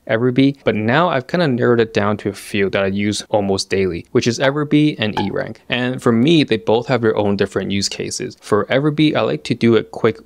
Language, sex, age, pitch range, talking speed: English, male, 20-39, 100-120 Hz, 240 wpm